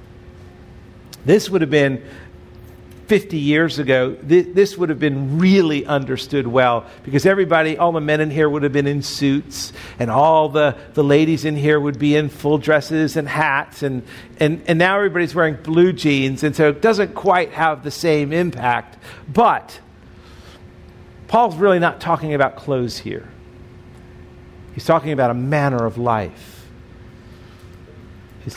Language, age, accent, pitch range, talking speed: English, 50-69, American, 130-175 Hz, 155 wpm